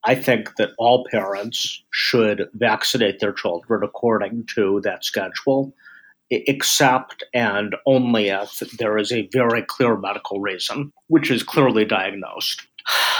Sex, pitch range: male, 110-145 Hz